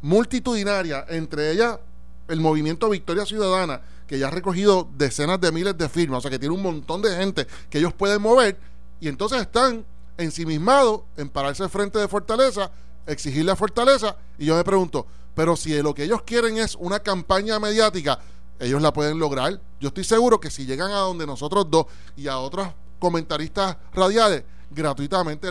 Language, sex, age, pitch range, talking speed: Spanish, male, 30-49, 135-195 Hz, 175 wpm